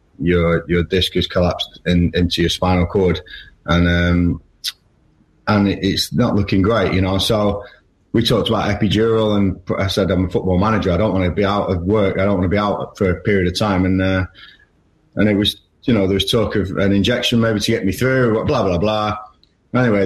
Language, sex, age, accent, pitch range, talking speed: English, male, 30-49, British, 90-100 Hz, 220 wpm